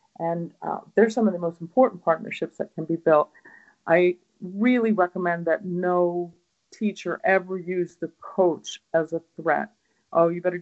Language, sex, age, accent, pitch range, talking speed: English, female, 50-69, American, 170-215 Hz, 165 wpm